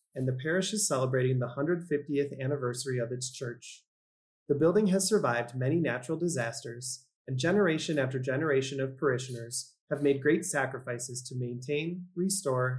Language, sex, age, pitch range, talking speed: English, male, 30-49, 125-160 Hz, 145 wpm